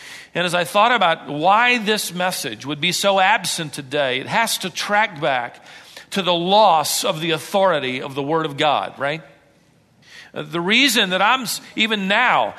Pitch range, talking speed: 175-235 Hz, 170 wpm